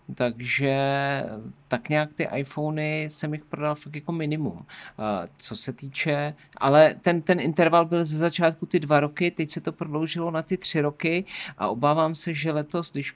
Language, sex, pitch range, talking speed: Czech, male, 125-150 Hz, 175 wpm